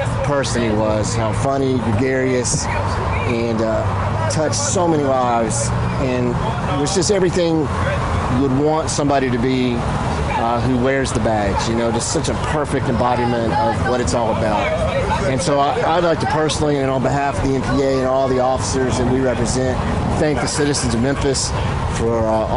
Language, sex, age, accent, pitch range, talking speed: English, male, 30-49, American, 105-130 Hz, 175 wpm